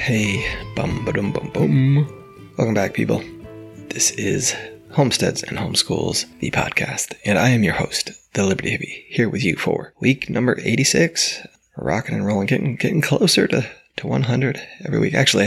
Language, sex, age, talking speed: English, male, 20-39, 165 wpm